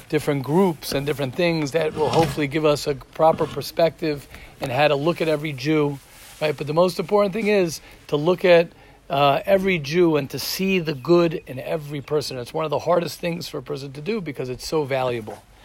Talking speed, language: 215 wpm, English